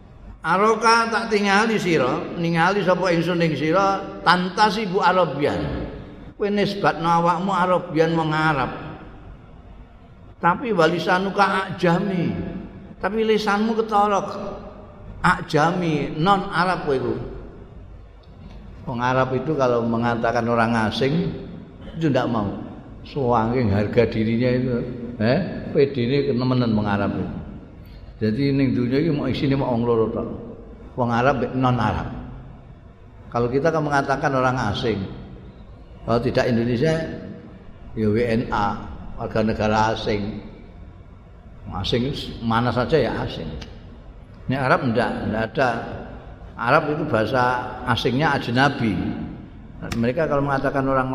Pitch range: 110-165 Hz